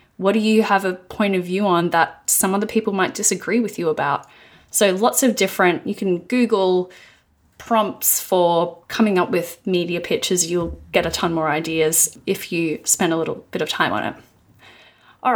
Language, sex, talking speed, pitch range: English, female, 190 wpm, 175-220 Hz